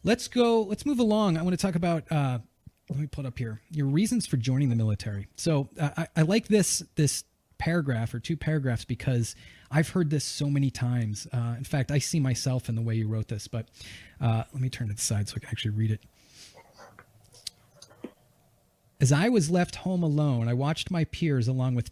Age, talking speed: 30-49, 215 wpm